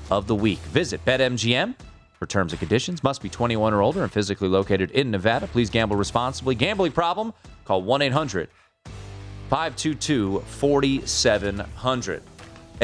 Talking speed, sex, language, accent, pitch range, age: 120 wpm, male, English, American, 110-160 Hz, 30-49